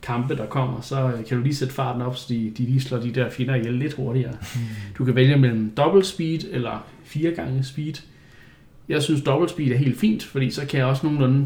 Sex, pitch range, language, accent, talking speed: male, 115-135 Hz, Danish, native, 230 wpm